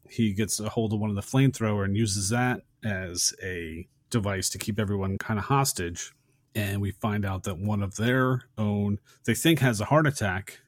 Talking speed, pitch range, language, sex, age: 200 wpm, 105-125 Hz, English, male, 30-49